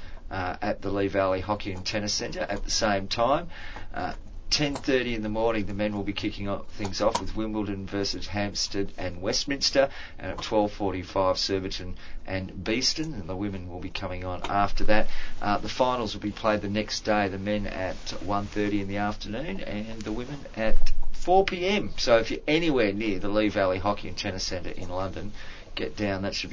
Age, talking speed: 40-59, 195 wpm